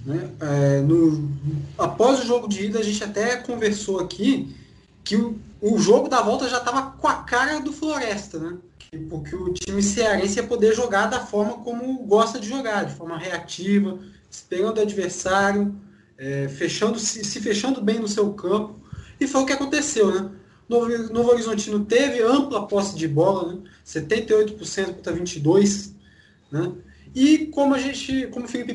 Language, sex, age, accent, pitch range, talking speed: Portuguese, male, 20-39, Brazilian, 195-260 Hz, 175 wpm